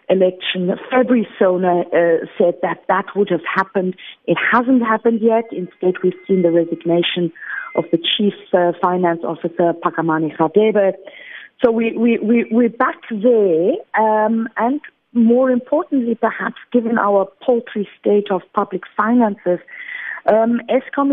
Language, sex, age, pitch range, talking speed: English, female, 50-69, 190-240 Hz, 135 wpm